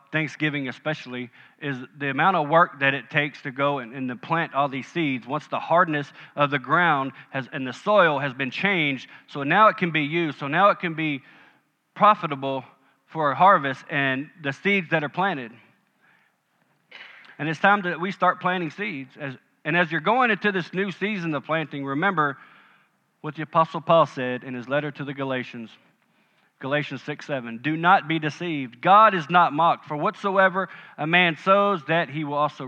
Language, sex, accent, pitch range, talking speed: English, male, American, 140-185 Hz, 190 wpm